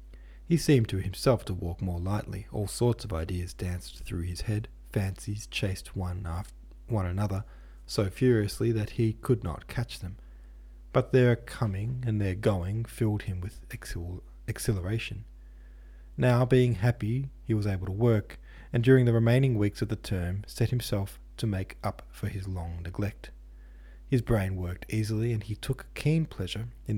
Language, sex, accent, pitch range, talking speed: English, male, Australian, 90-115 Hz, 165 wpm